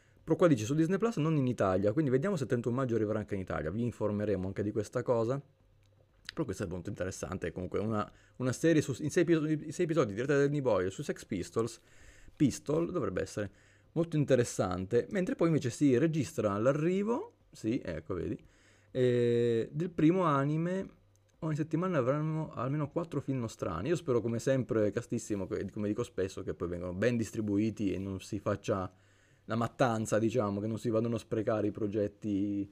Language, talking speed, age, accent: Italian, 180 wpm, 30-49, native